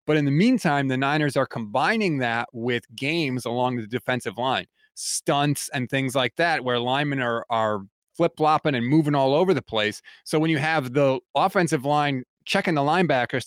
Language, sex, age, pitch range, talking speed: English, male, 30-49, 120-155 Hz, 185 wpm